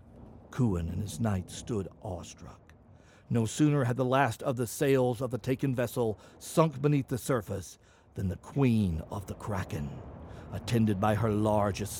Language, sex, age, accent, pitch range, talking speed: English, male, 60-79, American, 100-130 Hz, 160 wpm